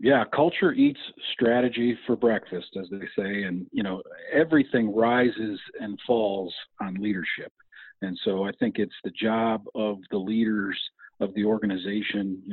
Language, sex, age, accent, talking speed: English, male, 40-59, American, 155 wpm